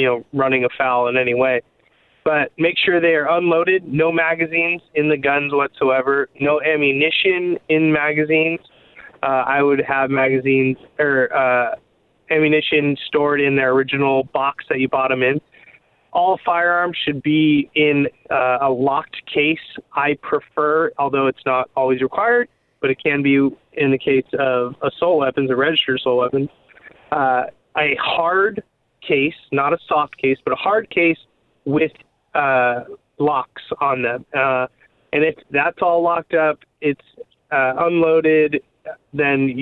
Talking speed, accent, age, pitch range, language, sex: 150 wpm, American, 20-39, 135-160 Hz, English, male